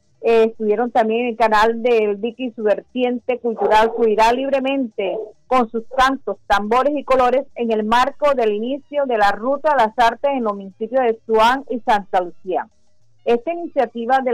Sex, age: female, 40-59